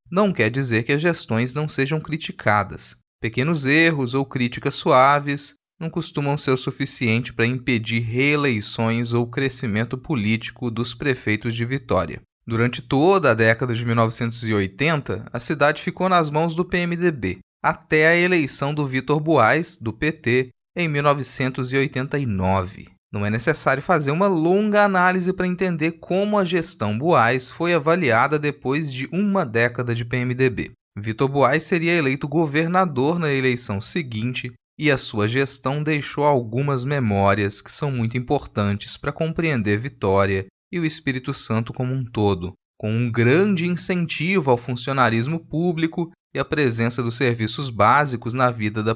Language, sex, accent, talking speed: Portuguese, male, Brazilian, 145 wpm